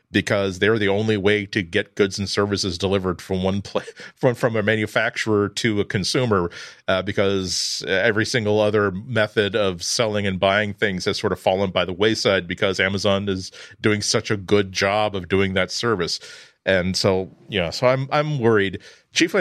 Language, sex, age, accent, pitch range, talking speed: English, male, 40-59, American, 100-130 Hz, 180 wpm